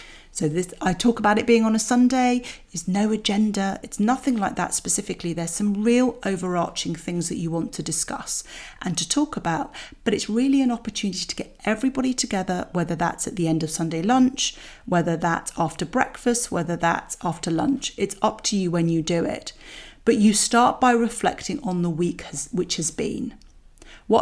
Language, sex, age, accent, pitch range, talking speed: English, female, 40-59, British, 170-240 Hz, 190 wpm